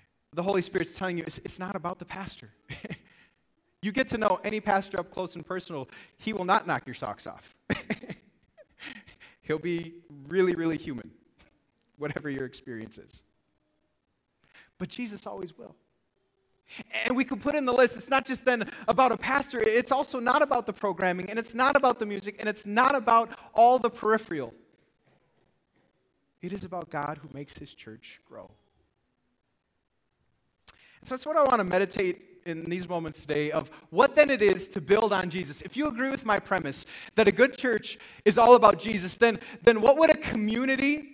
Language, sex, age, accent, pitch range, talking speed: English, male, 30-49, American, 170-230 Hz, 180 wpm